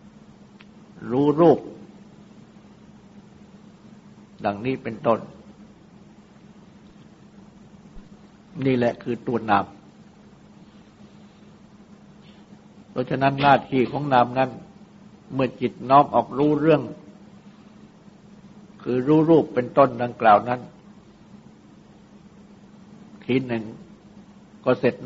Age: 60-79